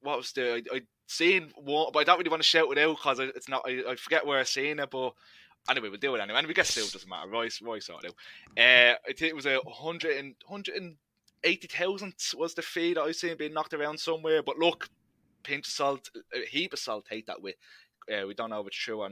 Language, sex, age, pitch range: English, male, 20-39, 115-155 Hz